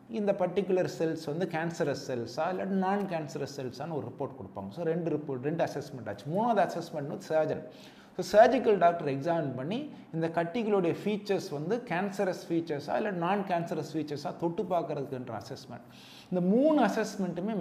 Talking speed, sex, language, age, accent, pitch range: 150 wpm, male, Tamil, 30-49, native, 145-190 Hz